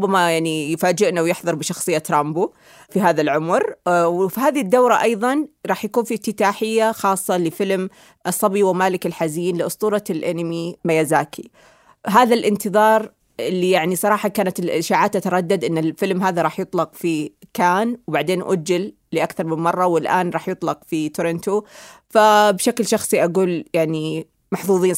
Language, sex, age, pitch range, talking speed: Arabic, female, 30-49, 165-210 Hz, 130 wpm